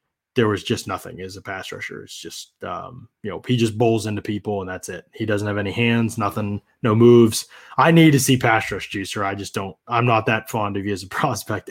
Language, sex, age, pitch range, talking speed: English, male, 20-39, 105-130 Hz, 245 wpm